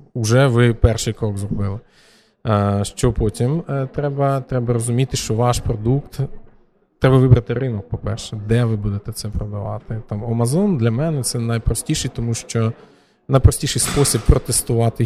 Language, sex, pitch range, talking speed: Ukrainian, male, 110-135 Hz, 130 wpm